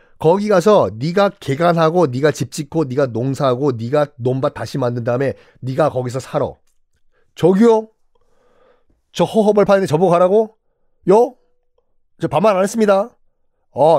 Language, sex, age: Korean, male, 40-59